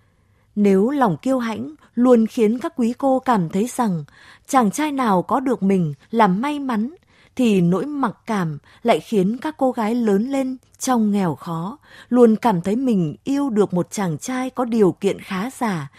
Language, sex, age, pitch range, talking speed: Vietnamese, female, 20-39, 185-250 Hz, 185 wpm